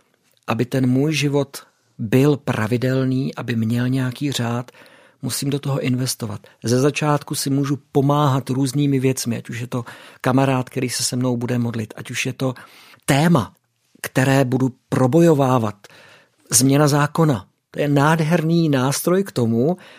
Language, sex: Czech, male